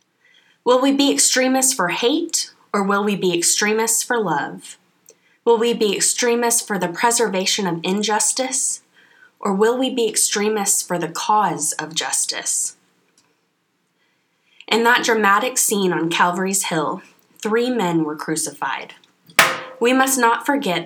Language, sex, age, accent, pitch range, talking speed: English, female, 20-39, American, 170-225 Hz, 135 wpm